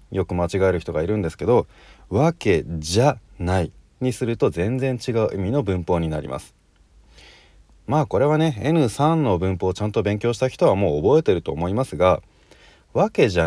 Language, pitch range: Japanese, 90-145 Hz